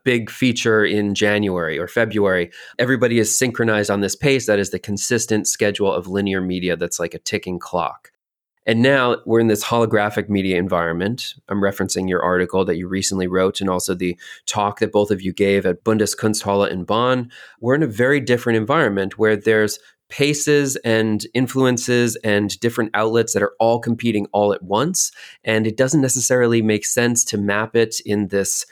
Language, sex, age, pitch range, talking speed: English, male, 30-49, 100-115 Hz, 180 wpm